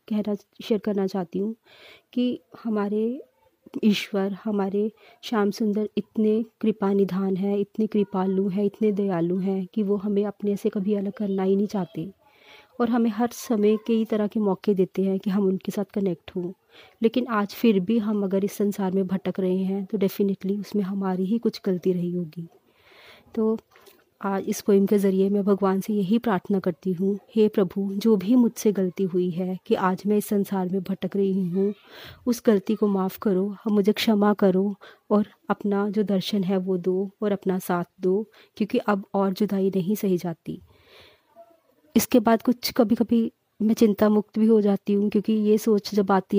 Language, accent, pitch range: Hindi, native, 195-220 Hz